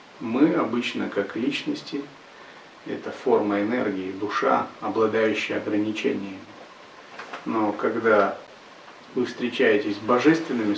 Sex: male